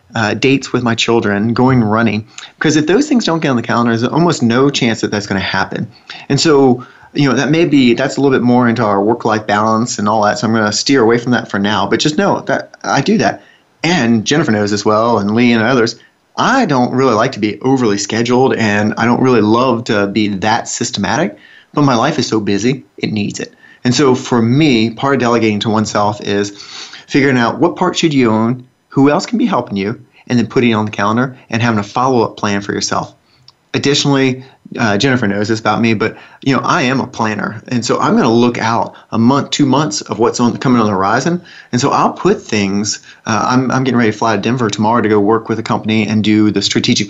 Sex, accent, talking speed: male, American, 245 wpm